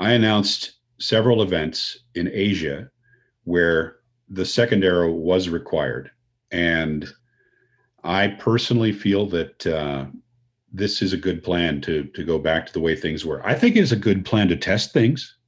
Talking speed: 165 wpm